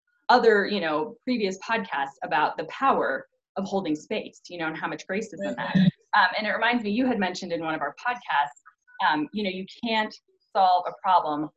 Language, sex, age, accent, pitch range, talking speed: English, female, 20-39, American, 175-255 Hz, 215 wpm